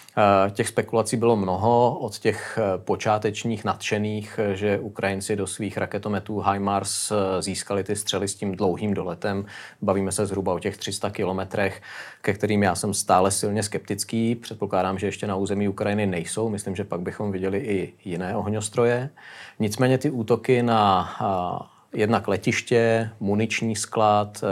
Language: Czech